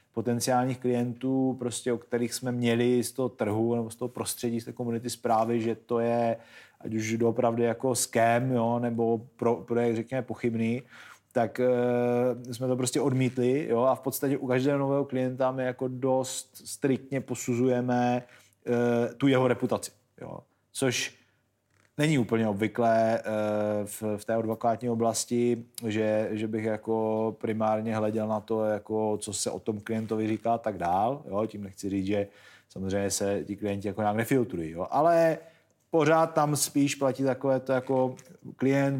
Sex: male